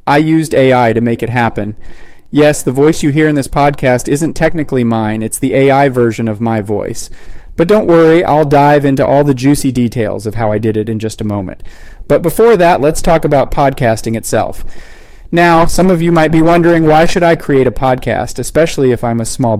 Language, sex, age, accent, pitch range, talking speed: English, male, 40-59, American, 115-150 Hz, 215 wpm